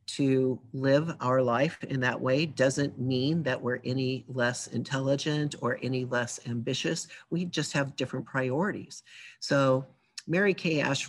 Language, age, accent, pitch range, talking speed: English, 50-69, American, 125-150 Hz, 145 wpm